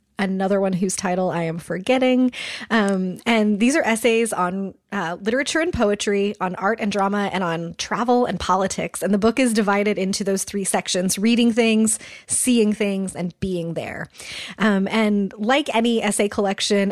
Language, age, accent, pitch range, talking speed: English, 20-39, American, 200-235 Hz, 170 wpm